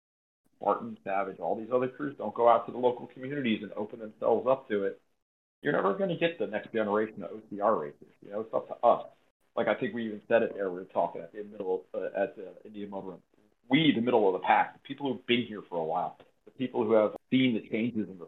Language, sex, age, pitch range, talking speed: English, male, 40-59, 105-125 Hz, 260 wpm